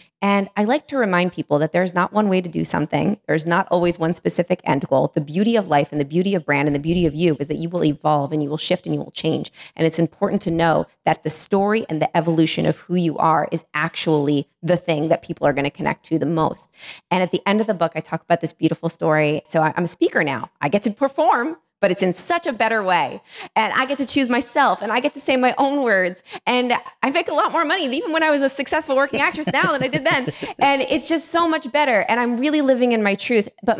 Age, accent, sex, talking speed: 20-39, American, female, 270 wpm